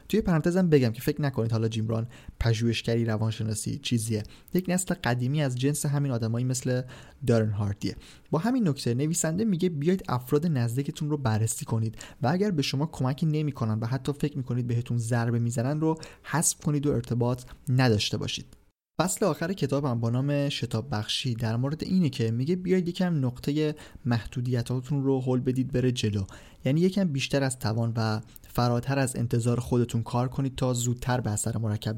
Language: Persian